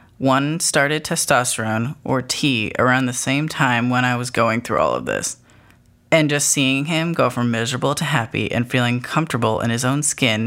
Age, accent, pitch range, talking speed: 20-39, American, 120-140 Hz, 190 wpm